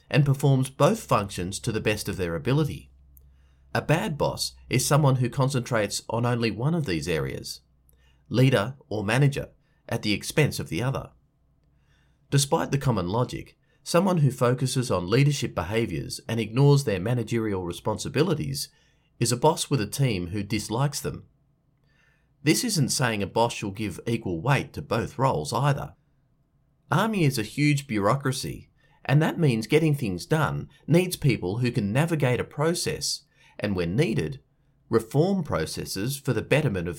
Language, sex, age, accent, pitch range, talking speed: English, male, 40-59, Australian, 110-150 Hz, 155 wpm